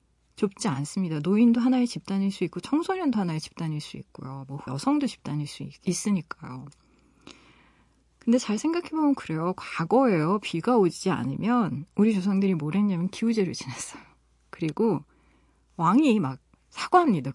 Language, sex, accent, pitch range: Korean, female, native, 160-240 Hz